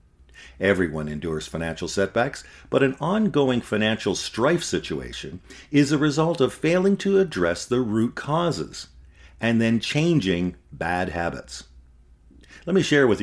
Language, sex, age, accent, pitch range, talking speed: English, male, 50-69, American, 70-120 Hz, 130 wpm